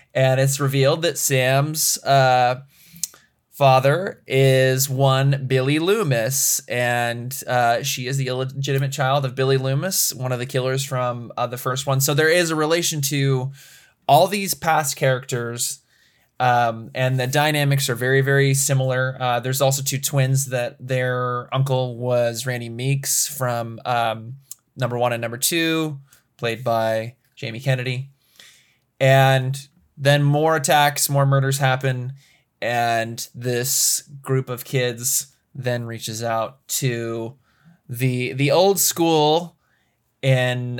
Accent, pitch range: American, 120-140 Hz